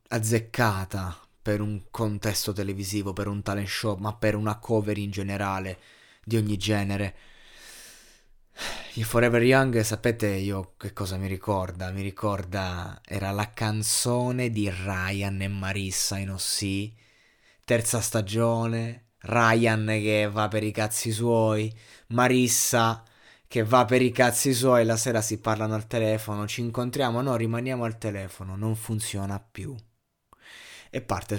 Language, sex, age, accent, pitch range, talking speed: Italian, male, 20-39, native, 100-115 Hz, 135 wpm